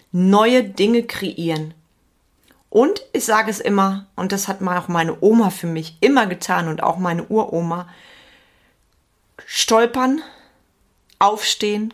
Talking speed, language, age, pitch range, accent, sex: 120 wpm, German, 30-49, 180-215 Hz, German, female